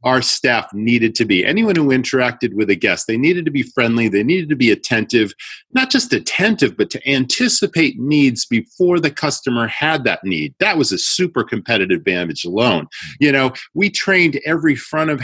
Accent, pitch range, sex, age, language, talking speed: American, 120-175 Hz, male, 40-59, English, 190 wpm